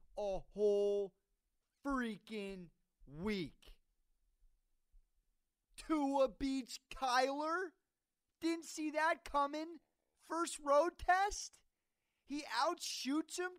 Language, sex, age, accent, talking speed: English, male, 40-59, American, 75 wpm